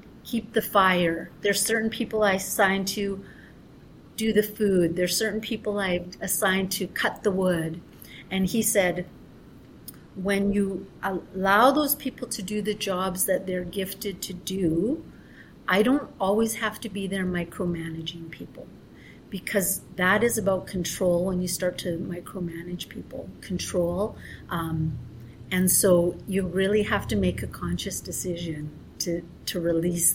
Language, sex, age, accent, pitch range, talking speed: English, female, 40-59, American, 175-210 Hz, 145 wpm